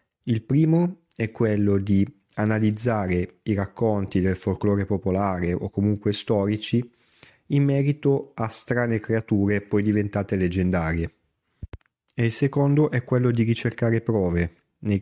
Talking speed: 125 wpm